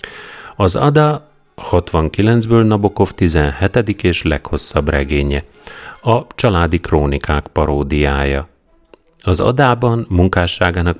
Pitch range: 75-110 Hz